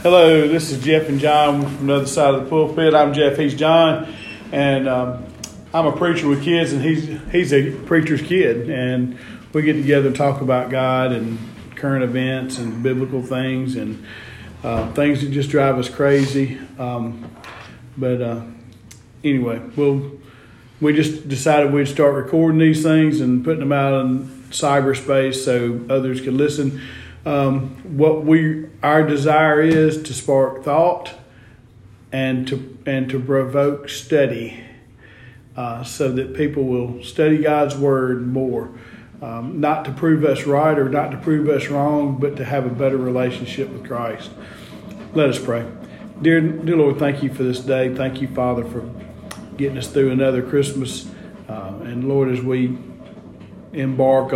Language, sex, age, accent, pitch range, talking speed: English, male, 40-59, American, 125-150 Hz, 160 wpm